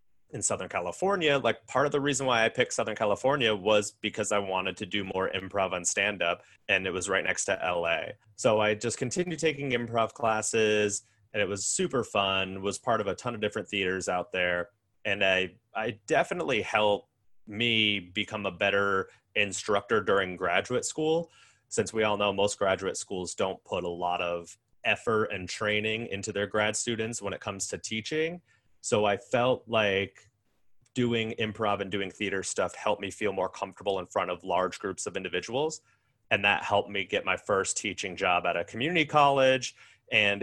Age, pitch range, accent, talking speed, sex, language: 30-49, 95-120 Hz, American, 185 wpm, male, English